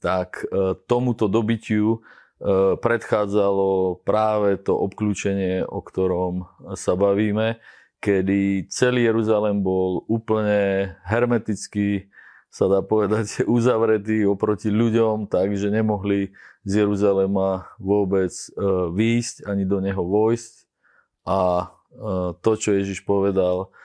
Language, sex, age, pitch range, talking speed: Slovak, male, 30-49, 95-115 Hz, 95 wpm